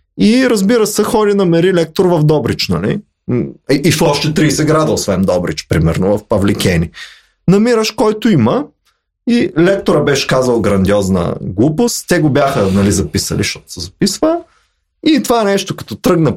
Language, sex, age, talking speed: Bulgarian, male, 30-49, 150 wpm